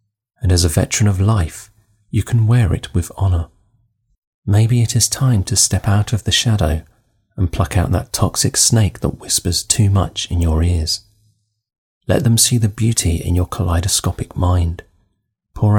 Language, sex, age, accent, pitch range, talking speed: English, male, 30-49, British, 90-110 Hz, 170 wpm